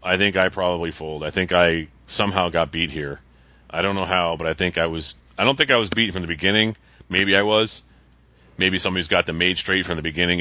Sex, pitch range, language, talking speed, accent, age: male, 70-90 Hz, English, 240 wpm, American, 30-49